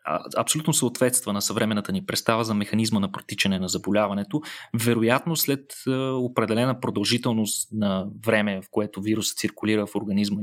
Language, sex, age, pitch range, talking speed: Bulgarian, male, 20-39, 105-130 Hz, 140 wpm